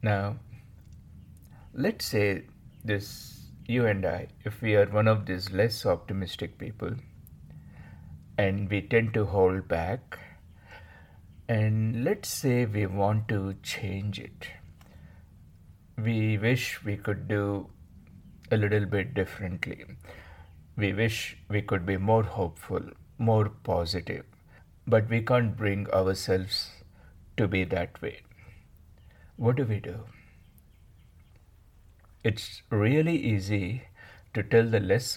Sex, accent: male, Indian